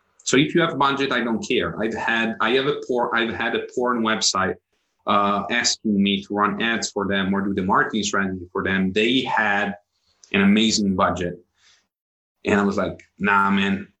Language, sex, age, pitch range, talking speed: Italian, male, 30-49, 100-115 Hz, 195 wpm